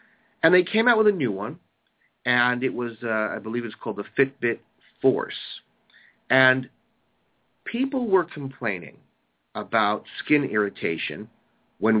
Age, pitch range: 40-59, 110-140 Hz